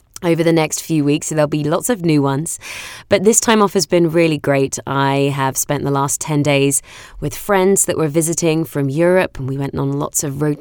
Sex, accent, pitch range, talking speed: female, British, 145-180 Hz, 230 wpm